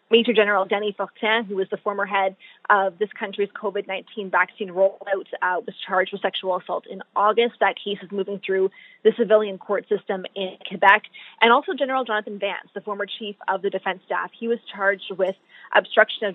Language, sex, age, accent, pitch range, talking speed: English, female, 20-39, American, 190-215 Hz, 190 wpm